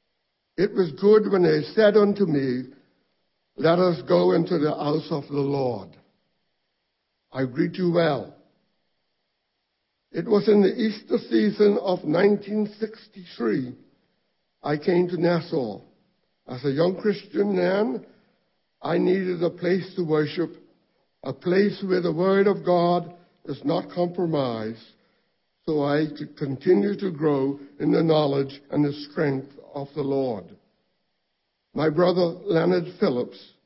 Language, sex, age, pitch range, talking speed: English, male, 60-79, 150-190 Hz, 130 wpm